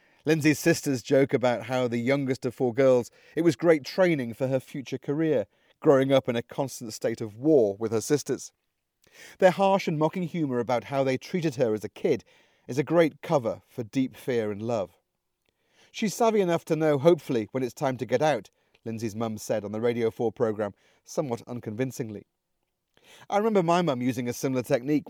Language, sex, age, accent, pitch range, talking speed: English, male, 40-59, British, 120-165 Hz, 195 wpm